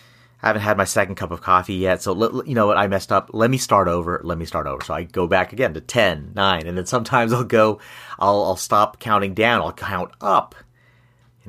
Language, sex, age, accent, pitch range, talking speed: English, male, 30-49, American, 95-120 Hz, 250 wpm